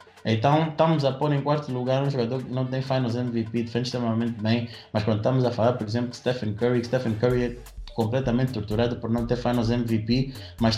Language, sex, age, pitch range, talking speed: Portuguese, male, 20-39, 110-125 Hz, 210 wpm